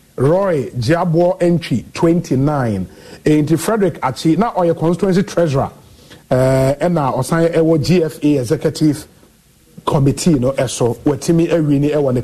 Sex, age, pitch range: male, 50-69, 140-185 Hz